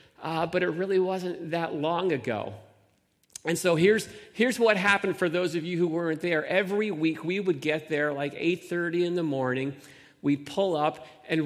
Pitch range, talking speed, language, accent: 155-195 Hz, 190 wpm, English, American